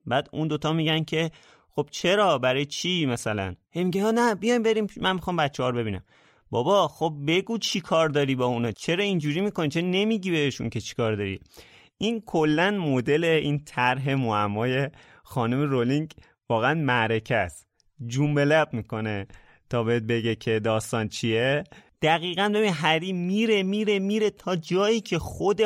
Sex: male